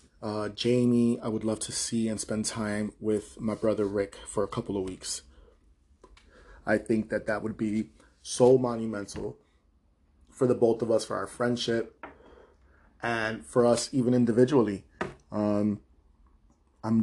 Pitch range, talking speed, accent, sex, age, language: 105-120 Hz, 150 wpm, American, male, 20-39, English